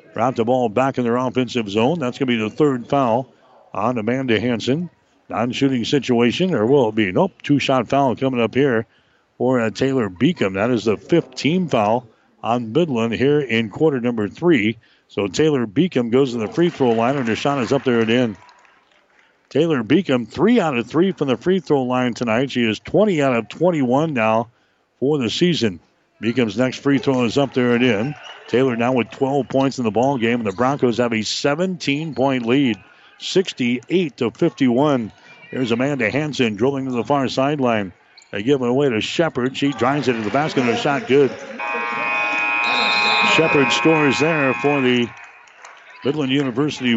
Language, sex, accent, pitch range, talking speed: English, male, American, 120-140 Hz, 190 wpm